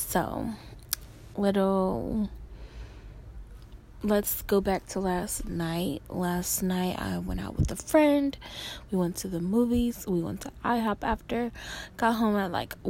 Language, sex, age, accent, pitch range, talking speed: English, female, 10-29, American, 175-215 Hz, 140 wpm